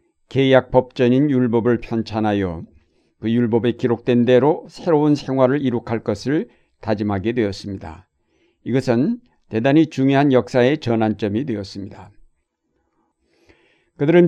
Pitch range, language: 115-135 Hz, Korean